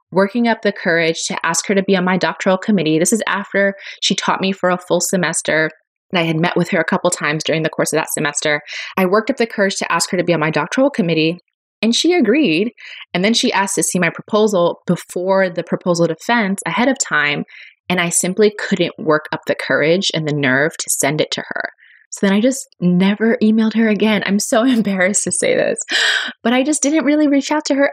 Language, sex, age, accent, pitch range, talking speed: English, female, 20-39, American, 165-220 Hz, 235 wpm